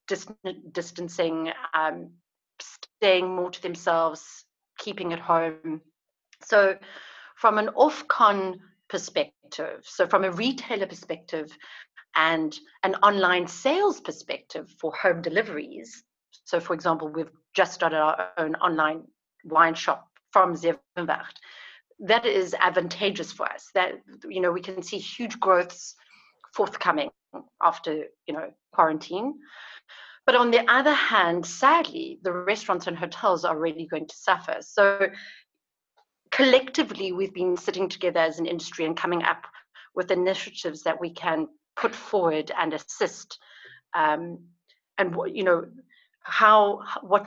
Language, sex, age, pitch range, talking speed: English, female, 40-59, 170-205 Hz, 130 wpm